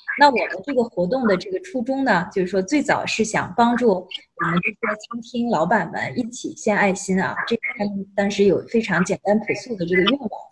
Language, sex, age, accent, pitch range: Chinese, female, 20-39, native, 185-235 Hz